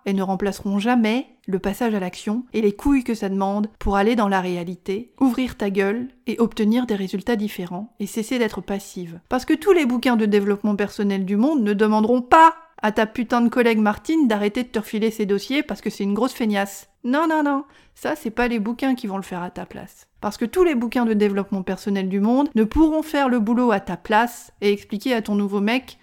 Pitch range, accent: 200-245 Hz, French